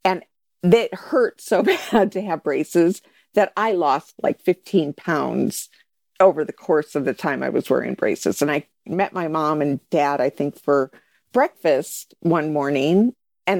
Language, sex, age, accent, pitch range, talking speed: English, female, 50-69, American, 160-250 Hz, 170 wpm